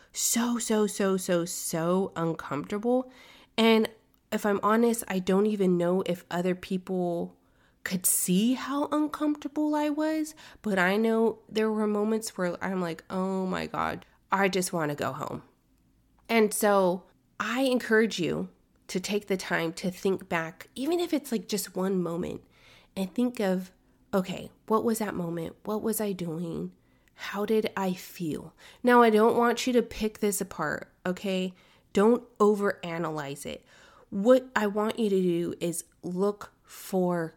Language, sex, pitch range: English, female, 180-230 Hz